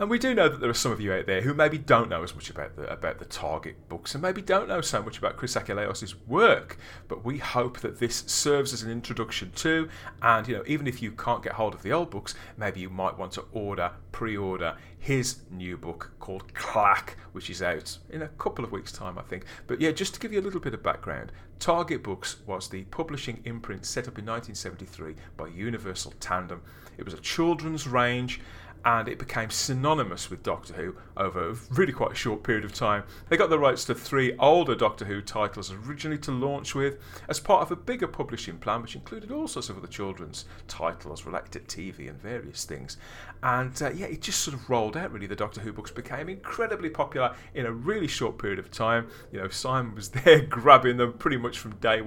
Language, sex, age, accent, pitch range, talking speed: English, male, 30-49, British, 95-135 Hz, 220 wpm